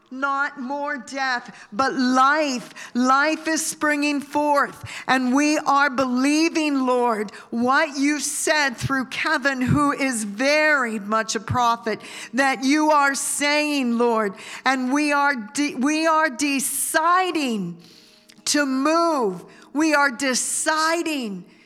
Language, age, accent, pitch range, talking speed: English, 50-69, American, 260-310 Hz, 115 wpm